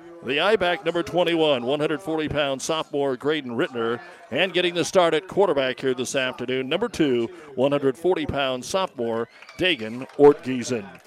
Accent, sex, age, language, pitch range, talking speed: American, male, 50-69, English, 125-165 Hz, 125 wpm